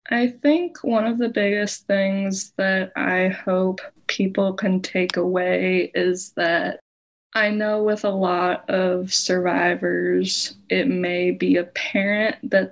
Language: English